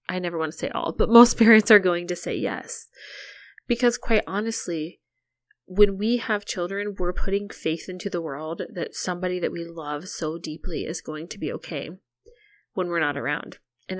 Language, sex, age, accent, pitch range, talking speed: English, female, 20-39, American, 175-215 Hz, 190 wpm